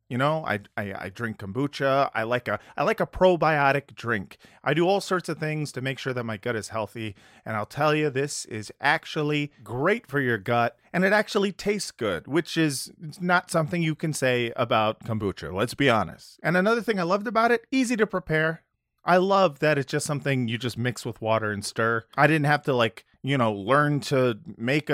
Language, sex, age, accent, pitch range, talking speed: English, male, 30-49, American, 125-175 Hz, 215 wpm